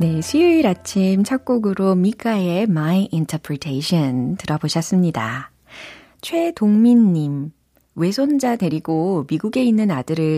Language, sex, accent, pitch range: Korean, female, native, 160-220 Hz